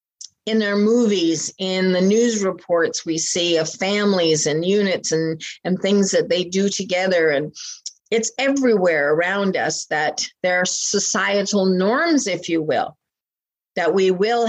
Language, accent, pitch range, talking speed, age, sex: English, American, 175-220 Hz, 150 wpm, 50-69, female